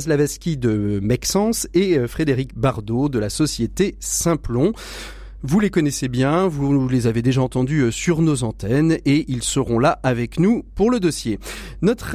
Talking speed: 160 wpm